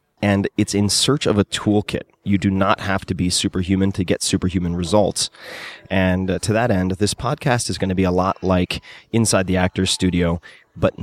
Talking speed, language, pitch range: 195 wpm, English, 90-105 Hz